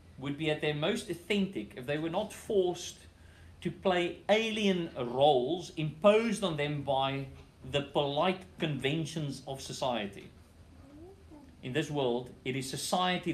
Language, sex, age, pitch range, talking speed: English, male, 40-59, 120-170 Hz, 135 wpm